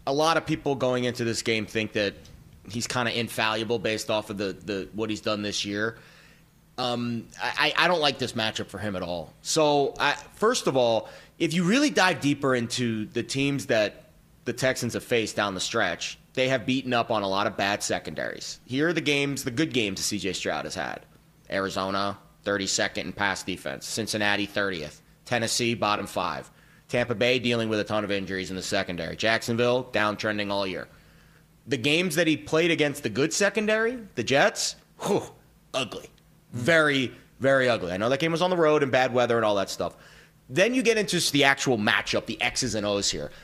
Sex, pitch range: male, 105-155 Hz